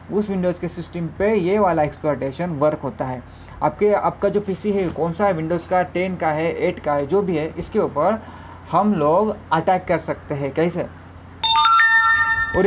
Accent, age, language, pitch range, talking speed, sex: native, 20-39, Hindi, 155-205 Hz, 190 wpm, male